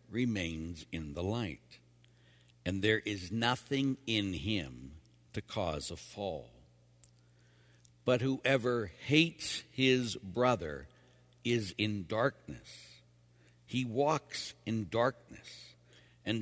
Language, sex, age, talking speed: English, male, 60-79, 100 wpm